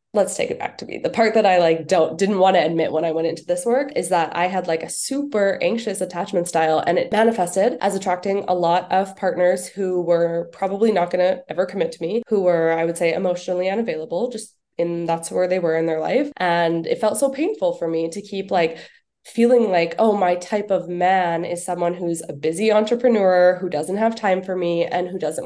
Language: English